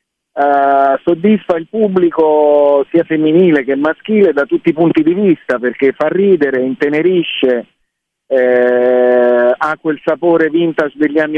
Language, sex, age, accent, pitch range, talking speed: Italian, male, 40-59, native, 135-170 Hz, 130 wpm